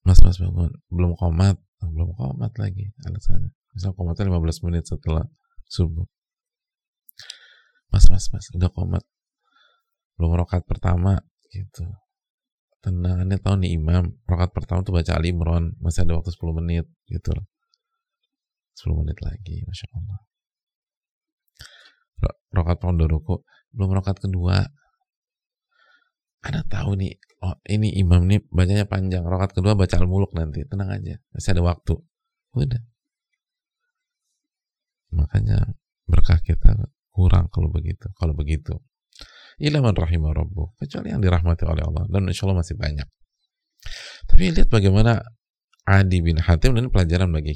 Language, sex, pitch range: Indonesian, male, 85-125 Hz